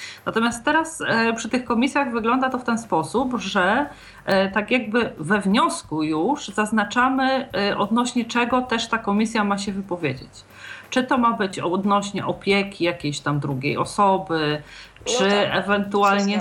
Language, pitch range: Polish, 190-230 Hz